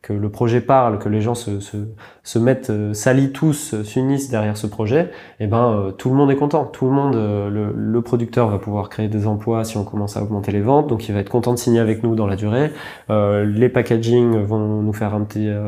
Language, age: French, 20-39